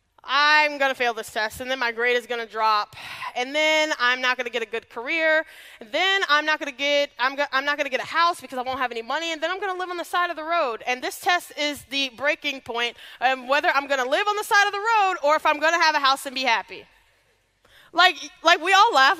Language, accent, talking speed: English, American, 270 wpm